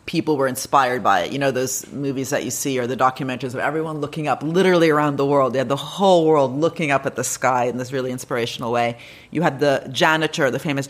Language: English